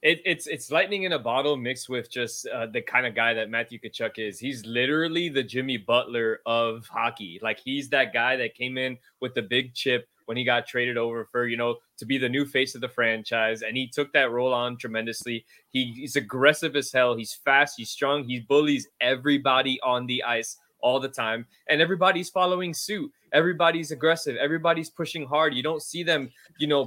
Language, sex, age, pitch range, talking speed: English, male, 20-39, 125-175 Hz, 210 wpm